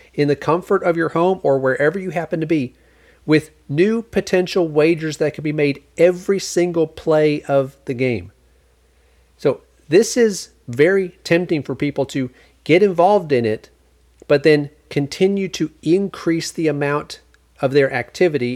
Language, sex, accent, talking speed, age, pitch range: English, male, American, 155 wpm, 40-59, 120-165 Hz